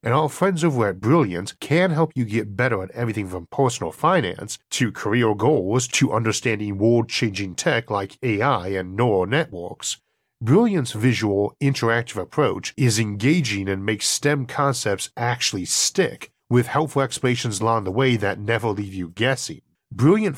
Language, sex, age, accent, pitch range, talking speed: English, male, 40-59, American, 110-150 Hz, 155 wpm